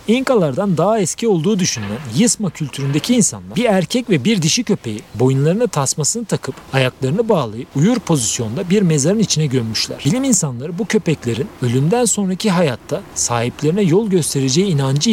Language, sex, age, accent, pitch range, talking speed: Turkish, male, 40-59, native, 130-210 Hz, 145 wpm